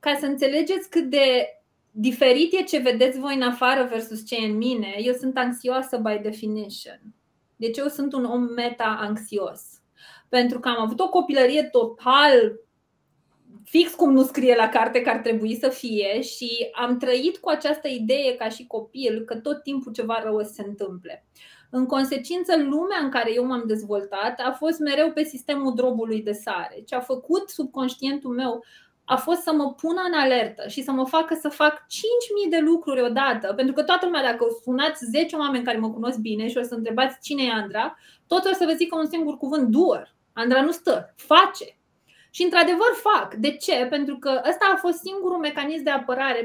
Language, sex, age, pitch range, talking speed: Romanian, female, 20-39, 235-300 Hz, 190 wpm